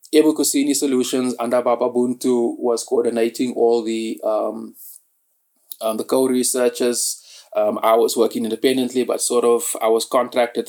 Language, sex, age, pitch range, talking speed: English, male, 20-39, 115-130 Hz, 140 wpm